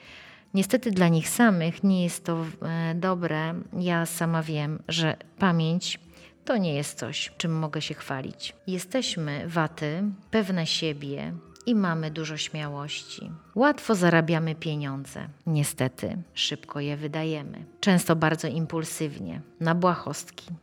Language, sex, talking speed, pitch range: Polish, female, 120 wpm, 155-180 Hz